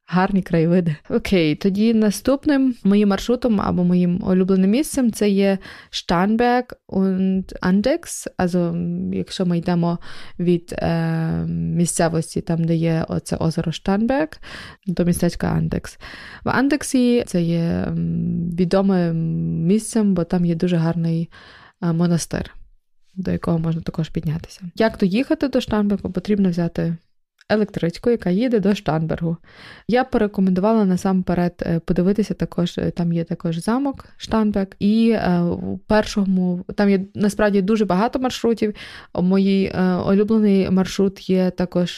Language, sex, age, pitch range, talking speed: Ukrainian, female, 20-39, 170-210 Hz, 120 wpm